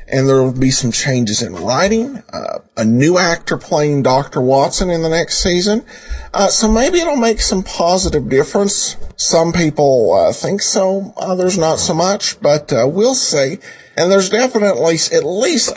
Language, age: English, 50-69